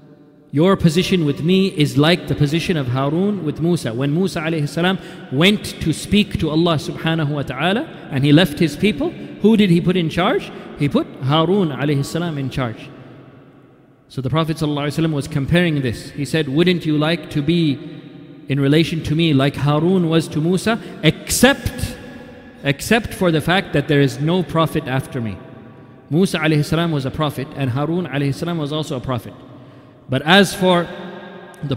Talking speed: 170 wpm